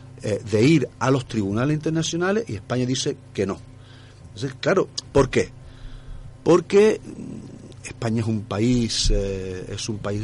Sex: male